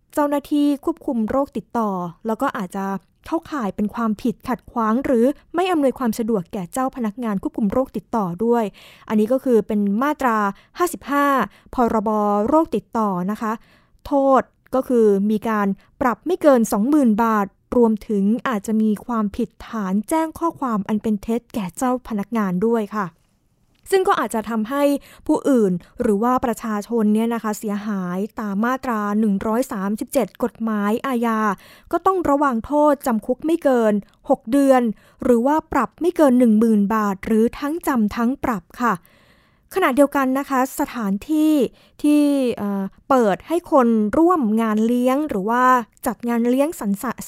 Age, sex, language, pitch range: 20-39, female, Thai, 215-270 Hz